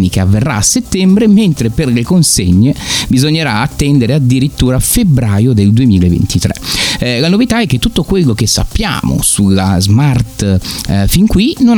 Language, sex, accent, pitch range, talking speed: Italian, male, native, 100-155 Hz, 145 wpm